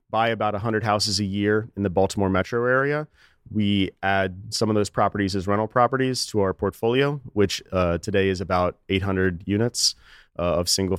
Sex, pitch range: male, 95-105 Hz